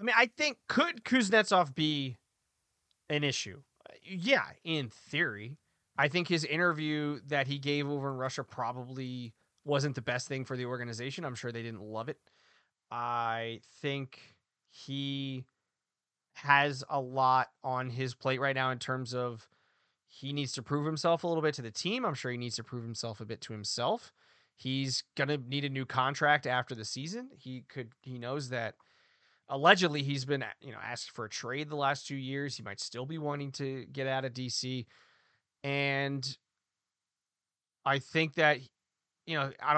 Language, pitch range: English, 120-145 Hz